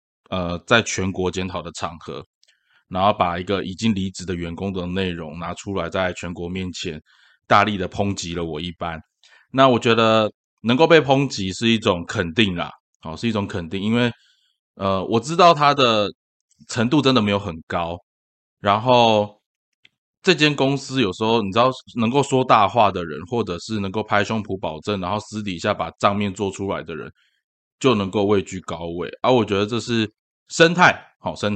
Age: 20-39